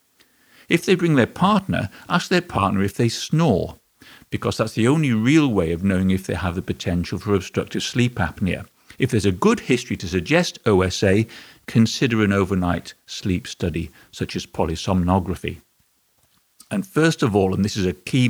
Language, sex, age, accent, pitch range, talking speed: English, male, 50-69, British, 95-125 Hz, 175 wpm